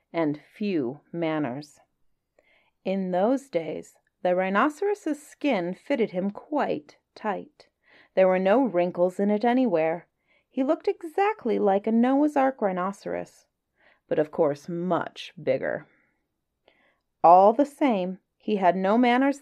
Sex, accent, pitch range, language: female, American, 175-275 Hz, English